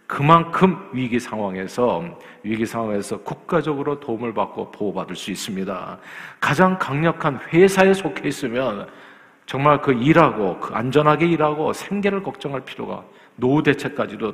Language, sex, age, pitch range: Korean, male, 40-59, 130-175 Hz